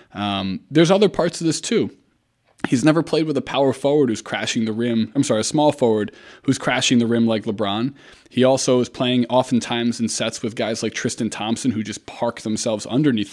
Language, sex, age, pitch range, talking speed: English, male, 20-39, 110-130 Hz, 205 wpm